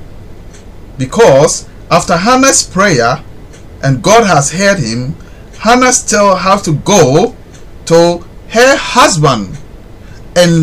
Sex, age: male, 50-69